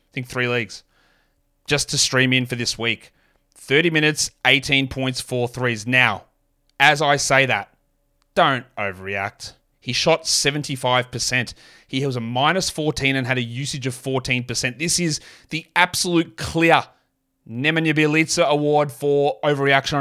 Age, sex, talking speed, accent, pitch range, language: 20-39, male, 145 wpm, Australian, 130-155 Hz, English